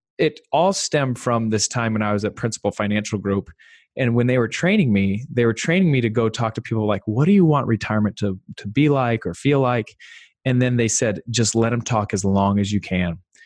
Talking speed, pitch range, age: 240 wpm, 100-125 Hz, 20-39